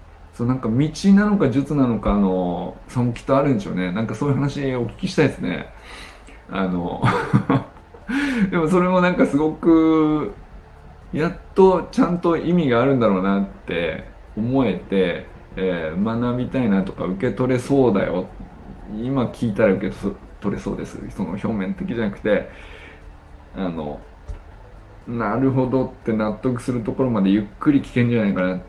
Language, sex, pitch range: Japanese, male, 95-135 Hz